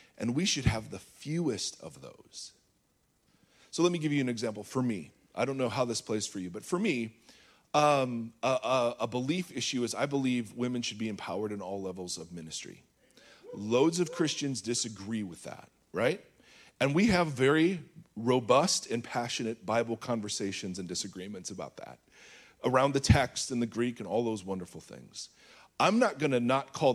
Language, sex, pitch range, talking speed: English, male, 110-155 Hz, 185 wpm